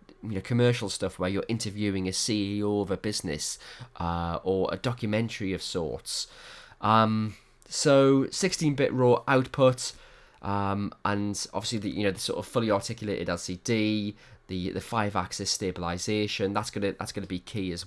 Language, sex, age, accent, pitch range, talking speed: English, male, 20-39, British, 95-135 Hz, 170 wpm